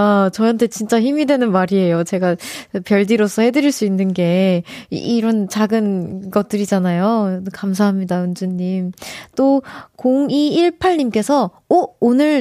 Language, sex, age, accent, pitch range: Korean, female, 20-39, native, 190-265 Hz